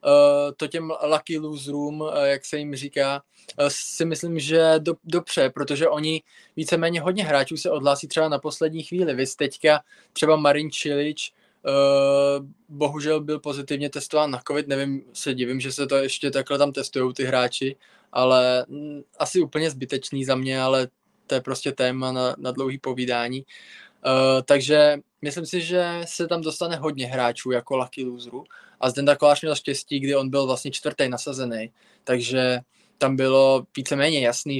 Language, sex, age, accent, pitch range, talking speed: Czech, male, 20-39, native, 125-150 Hz, 160 wpm